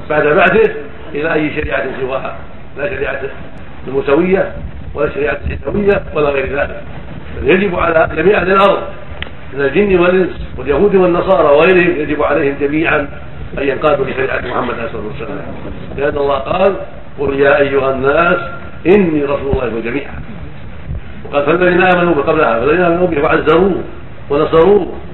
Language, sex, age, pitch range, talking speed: Arabic, male, 60-79, 140-180 Hz, 135 wpm